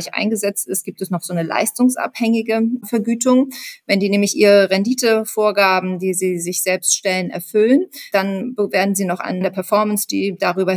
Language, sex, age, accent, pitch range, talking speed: German, female, 30-49, German, 170-210 Hz, 160 wpm